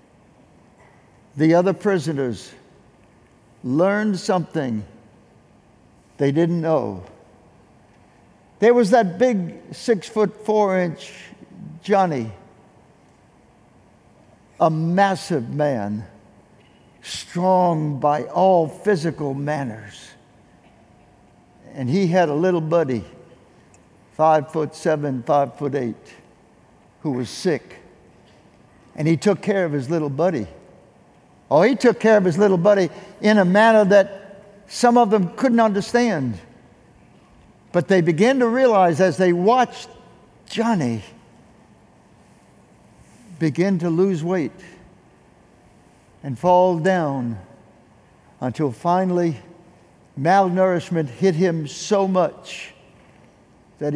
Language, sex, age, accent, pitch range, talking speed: English, male, 60-79, American, 140-200 Hz, 100 wpm